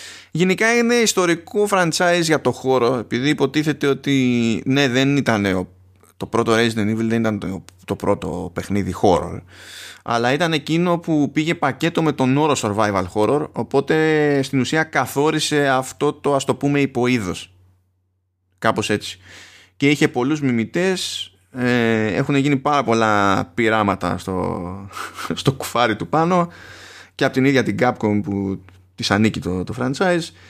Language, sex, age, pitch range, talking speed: Greek, male, 20-39, 100-145 Hz, 145 wpm